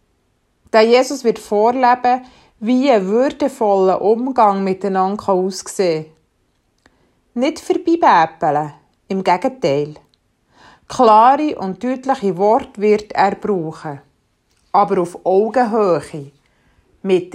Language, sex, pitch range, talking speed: German, female, 180-240 Hz, 90 wpm